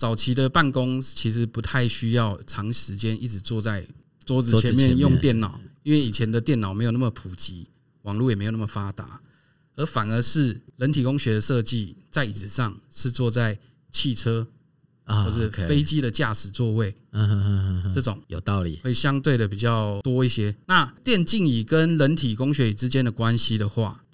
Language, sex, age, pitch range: Chinese, male, 20-39, 110-135 Hz